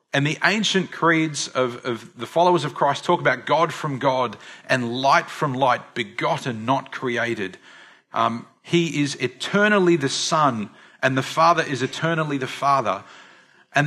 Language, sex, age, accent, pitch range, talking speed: English, male, 40-59, Australian, 130-175 Hz, 155 wpm